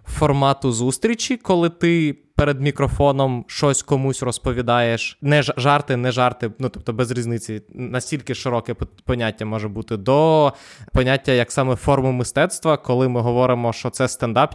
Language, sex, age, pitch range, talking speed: Ukrainian, male, 20-39, 115-140 Hz, 140 wpm